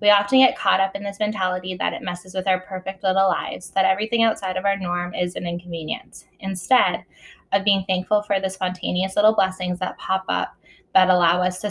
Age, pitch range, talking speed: 20-39, 180-205 Hz, 210 wpm